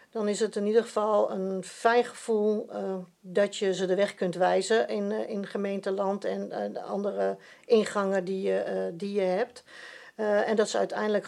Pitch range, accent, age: 185-215 Hz, Dutch, 50-69